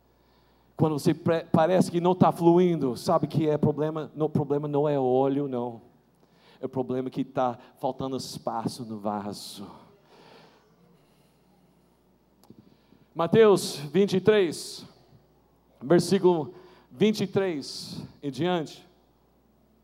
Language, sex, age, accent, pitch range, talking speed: Portuguese, male, 50-69, Brazilian, 145-225 Hz, 100 wpm